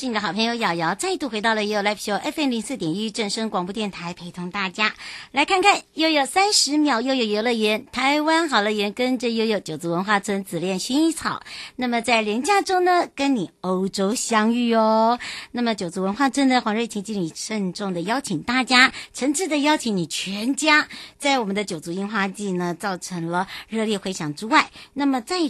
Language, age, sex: Chinese, 50-69, male